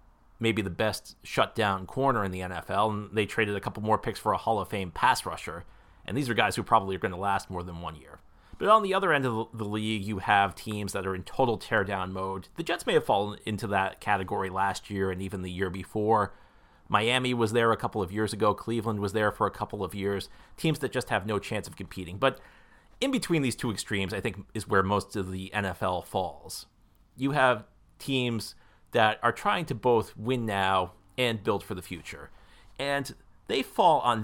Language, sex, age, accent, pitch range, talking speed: English, male, 30-49, American, 95-125 Hz, 220 wpm